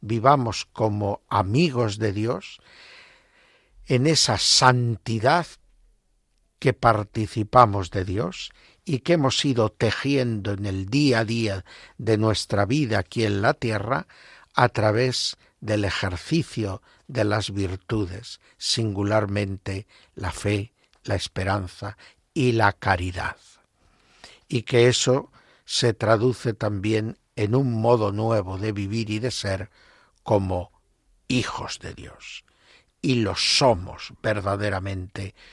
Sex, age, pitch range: male, 60-79, 100-125 Hz